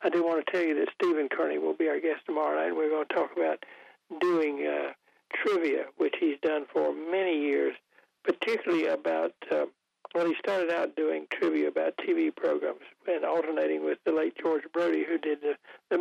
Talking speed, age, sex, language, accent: 195 wpm, 60-79, male, English, American